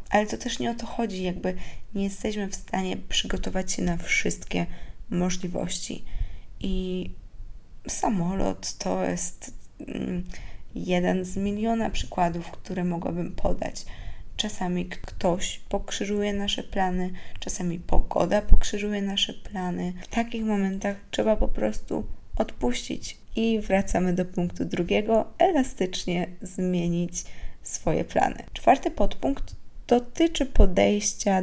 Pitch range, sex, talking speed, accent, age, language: 170-205 Hz, female, 115 wpm, native, 20-39, Polish